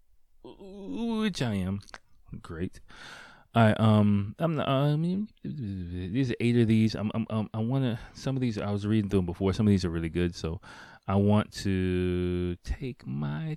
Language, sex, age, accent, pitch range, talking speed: English, male, 20-39, American, 90-110 Hz, 185 wpm